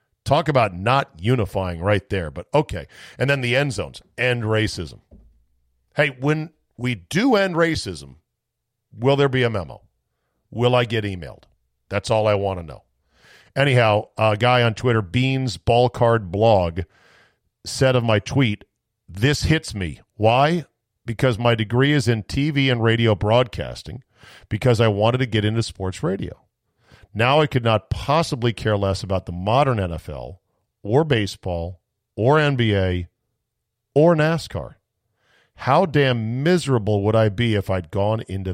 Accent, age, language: American, 40-59, English